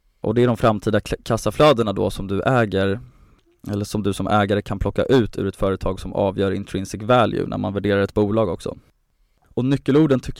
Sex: male